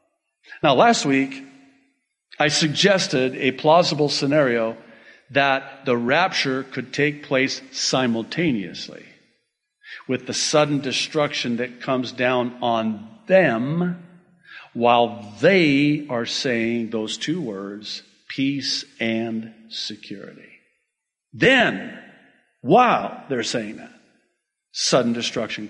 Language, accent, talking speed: English, American, 95 wpm